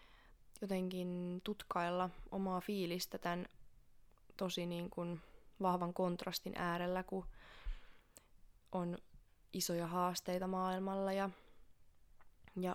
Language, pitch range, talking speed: Finnish, 180-200 Hz, 85 wpm